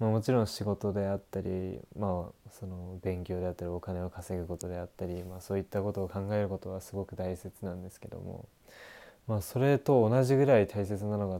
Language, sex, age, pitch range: Japanese, male, 20-39, 95-115 Hz